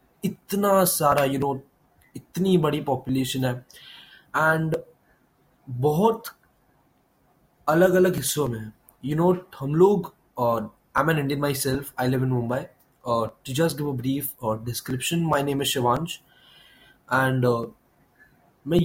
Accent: native